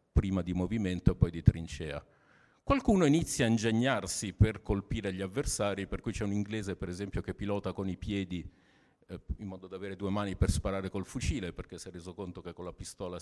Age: 50-69